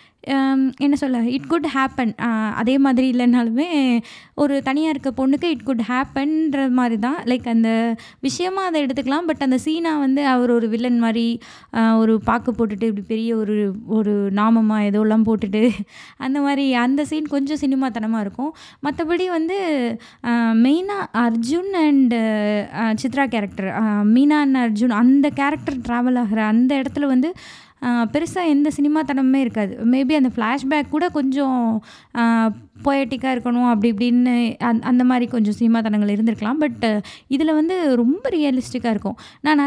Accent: native